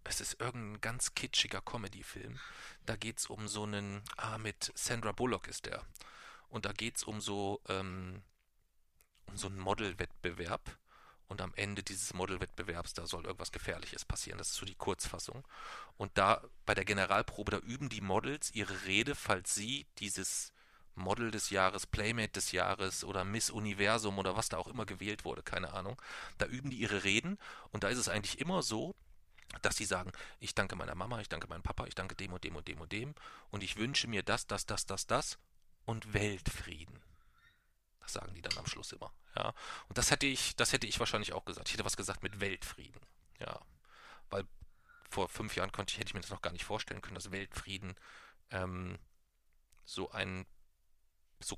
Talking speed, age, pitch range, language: 190 wpm, 40-59, 95-110 Hz, German